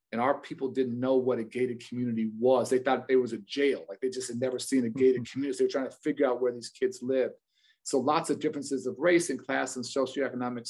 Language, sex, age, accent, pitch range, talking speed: English, male, 40-59, American, 125-140 Hz, 250 wpm